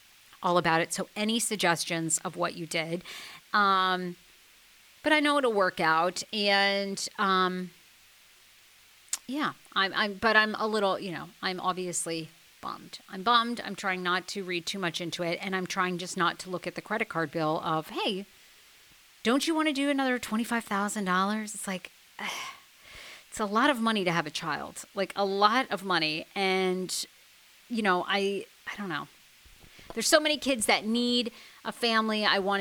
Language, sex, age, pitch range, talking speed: English, female, 40-59, 180-245 Hz, 180 wpm